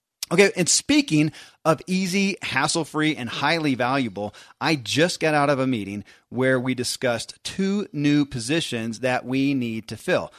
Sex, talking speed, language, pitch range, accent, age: male, 155 wpm, English, 120-155 Hz, American, 40-59